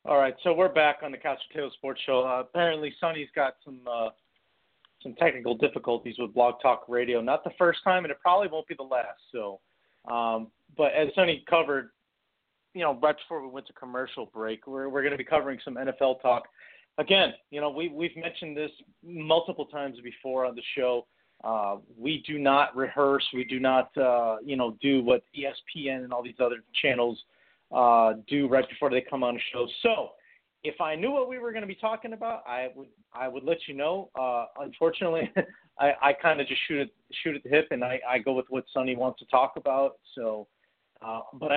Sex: male